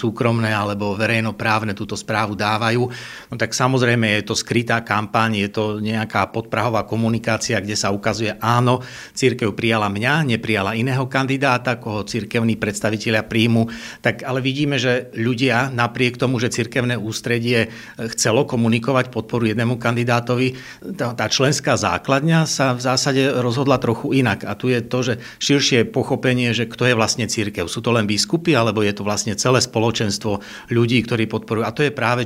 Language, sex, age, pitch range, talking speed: Slovak, male, 60-79, 110-125 Hz, 160 wpm